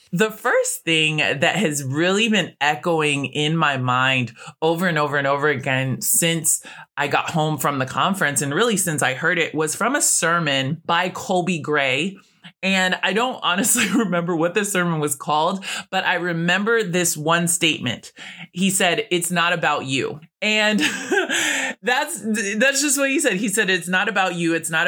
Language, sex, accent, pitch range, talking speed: English, male, American, 150-190 Hz, 180 wpm